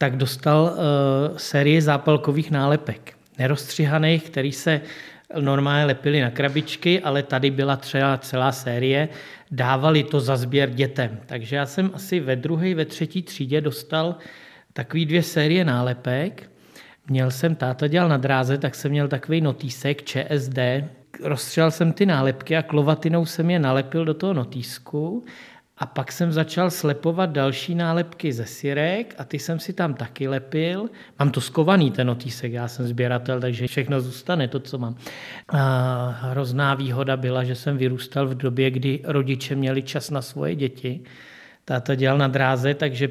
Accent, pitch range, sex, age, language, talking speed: native, 135-160 Hz, male, 40-59, Czech, 155 wpm